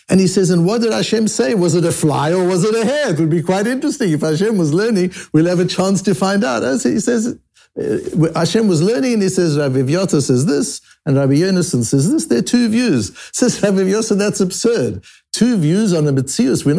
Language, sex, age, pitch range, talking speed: English, male, 60-79, 130-195 Hz, 230 wpm